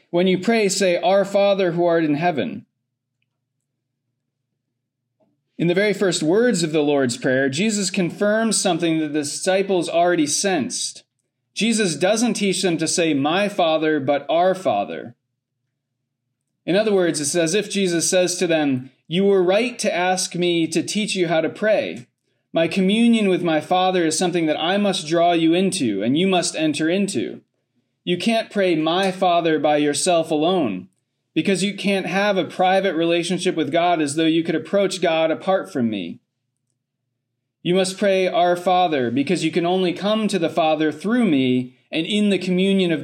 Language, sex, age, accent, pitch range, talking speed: English, male, 30-49, American, 145-190 Hz, 175 wpm